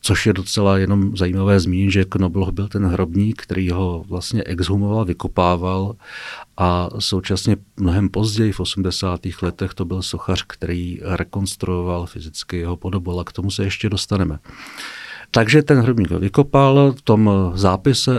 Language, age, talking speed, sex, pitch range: Czech, 50-69, 150 wpm, male, 95-110 Hz